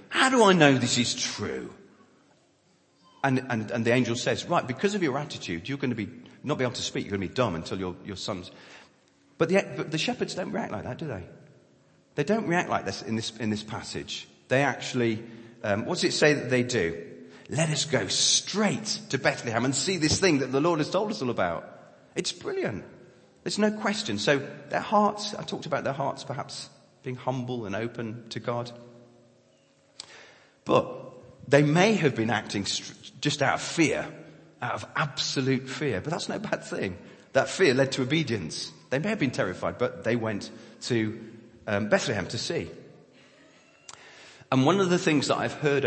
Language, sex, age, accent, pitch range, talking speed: English, male, 40-59, British, 115-150 Hz, 195 wpm